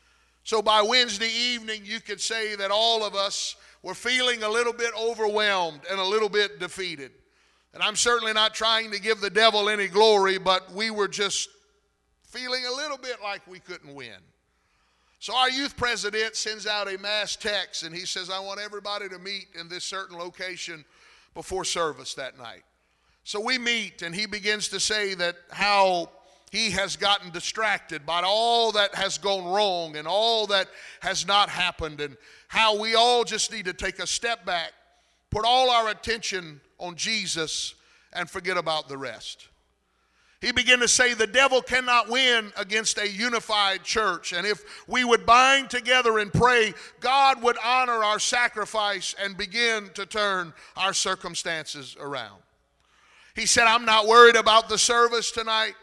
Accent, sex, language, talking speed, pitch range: American, male, English, 170 wpm, 185-225 Hz